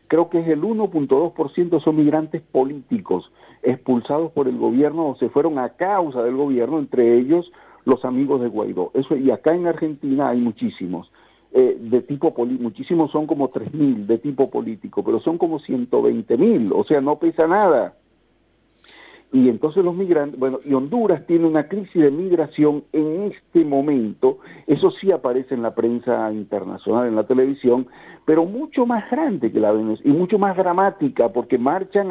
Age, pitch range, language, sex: 50-69, 130-175 Hz, Spanish, male